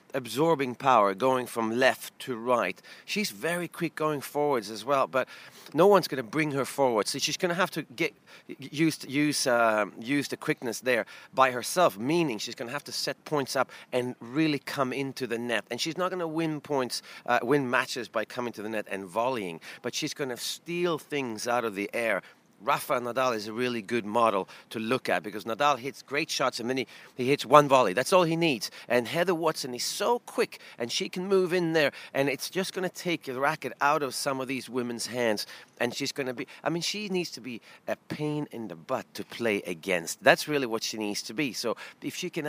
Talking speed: 230 wpm